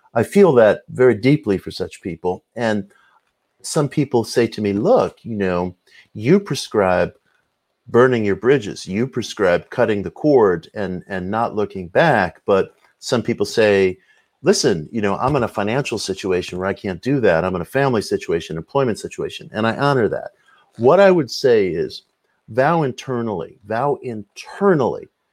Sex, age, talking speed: male, 50-69, 165 wpm